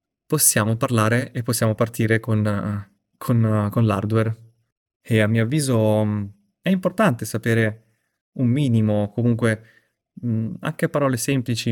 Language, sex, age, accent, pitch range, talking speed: Italian, male, 20-39, native, 110-125 Hz, 110 wpm